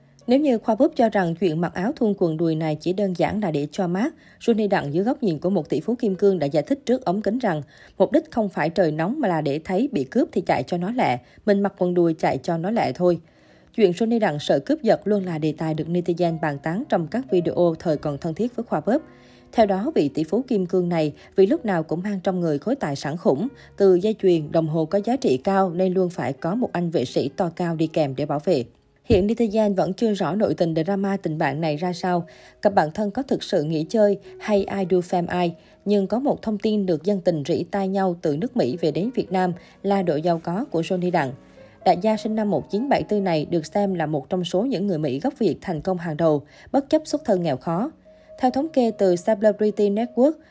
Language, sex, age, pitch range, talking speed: Vietnamese, female, 20-39, 165-215 Hz, 255 wpm